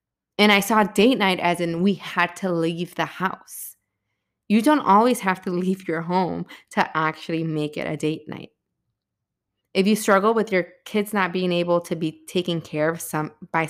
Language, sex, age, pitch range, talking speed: English, female, 20-39, 165-205 Hz, 190 wpm